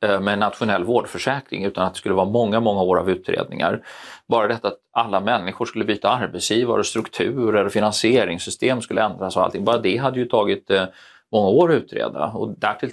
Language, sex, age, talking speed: Swedish, male, 30-49, 180 wpm